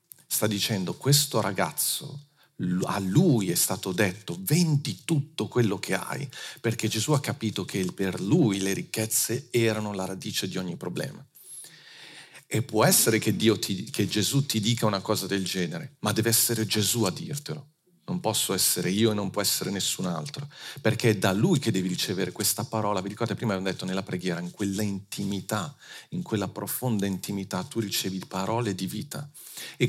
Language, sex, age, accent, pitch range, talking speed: Italian, male, 40-59, native, 100-125 Hz, 170 wpm